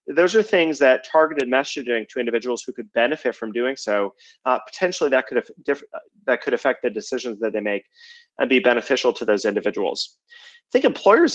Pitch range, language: 115-145 Hz, English